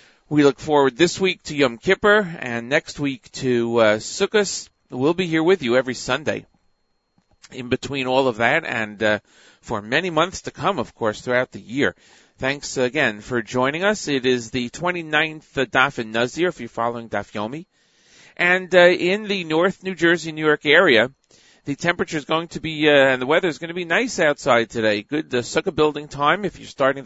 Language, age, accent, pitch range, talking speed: English, 40-59, American, 120-160 Hz, 195 wpm